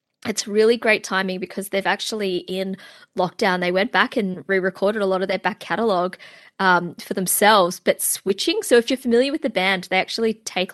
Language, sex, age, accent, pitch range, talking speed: English, female, 20-39, Australian, 185-225 Hz, 195 wpm